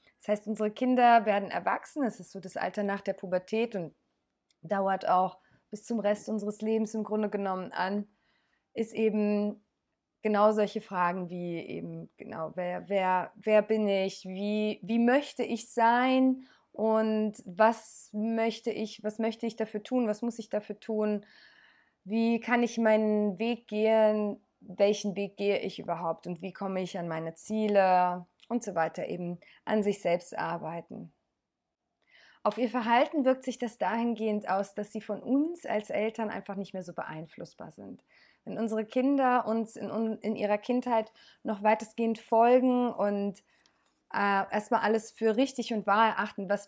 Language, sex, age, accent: German, female, 20-39, German